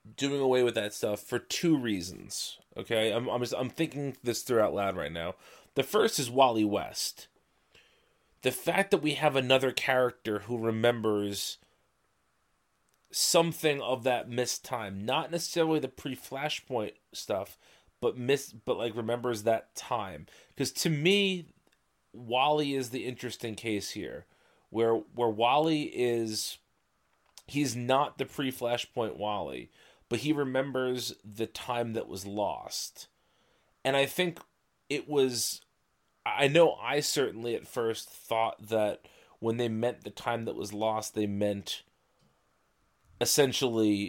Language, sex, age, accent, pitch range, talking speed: English, male, 30-49, American, 110-135 Hz, 135 wpm